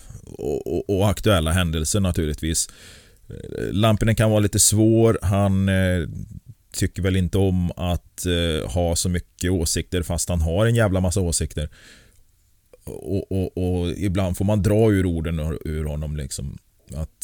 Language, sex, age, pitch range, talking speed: Swedish, male, 30-49, 85-95 Hz, 155 wpm